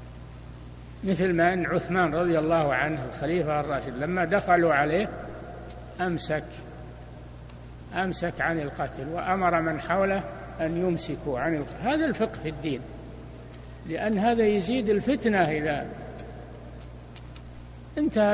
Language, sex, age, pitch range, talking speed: Arabic, male, 60-79, 120-195 Hz, 110 wpm